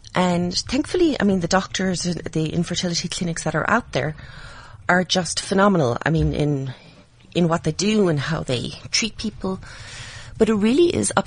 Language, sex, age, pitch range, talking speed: English, female, 30-49, 145-185 Hz, 175 wpm